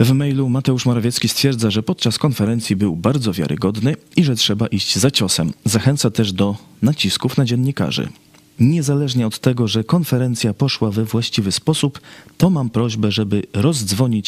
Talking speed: 155 wpm